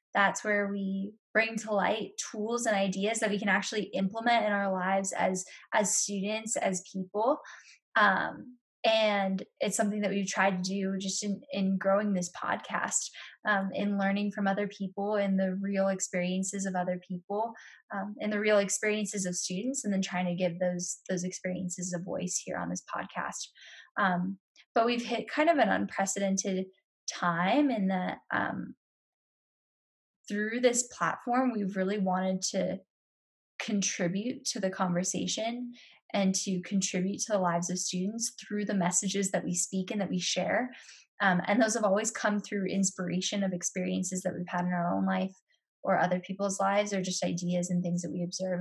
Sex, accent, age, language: female, American, 10-29, English